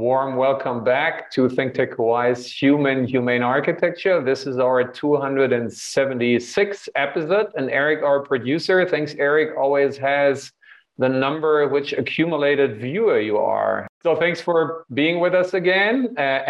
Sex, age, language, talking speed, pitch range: male, 40-59, English, 140 wpm, 130-150 Hz